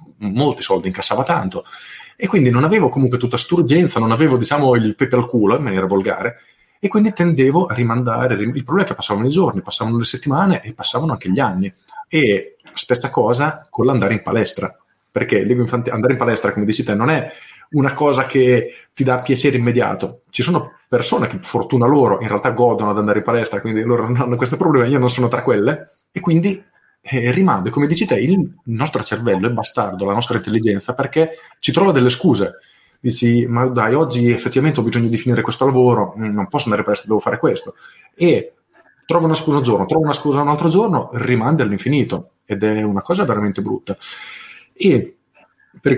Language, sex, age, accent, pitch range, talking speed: Italian, male, 30-49, native, 110-145 Hz, 195 wpm